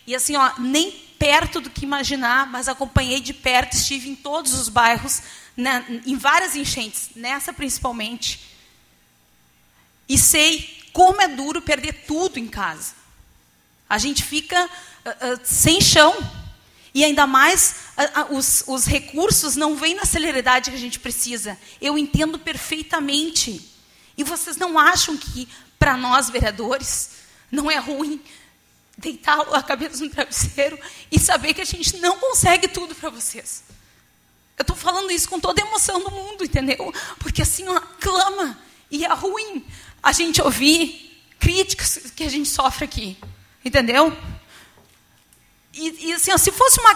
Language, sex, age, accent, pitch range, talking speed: Portuguese, female, 30-49, Brazilian, 265-330 Hz, 145 wpm